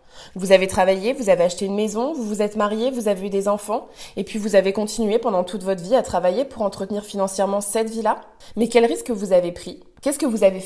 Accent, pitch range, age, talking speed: French, 180-230 Hz, 20-39, 240 wpm